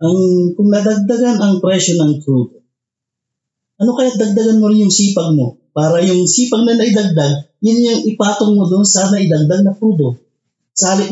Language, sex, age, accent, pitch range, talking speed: English, male, 30-49, Filipino, 135-215 Hz, 160 wpm